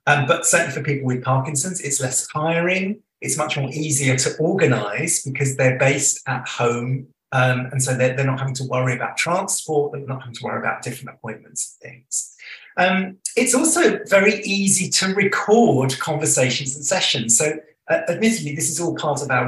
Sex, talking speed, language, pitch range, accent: male, 190 wpm, English, 135-190 Hz, British